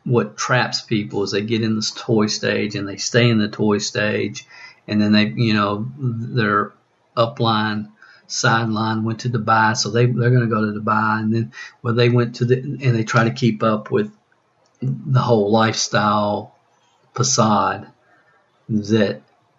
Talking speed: 165 wpm